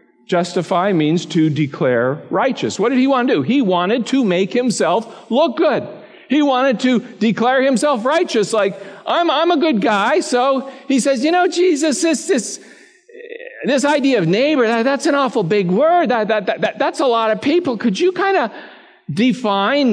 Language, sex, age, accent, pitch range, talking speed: English, male, 50-69, American, 195-295 Hz, 185 wpm